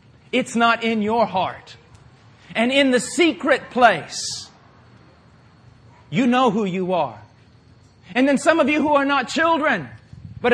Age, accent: 40-59, American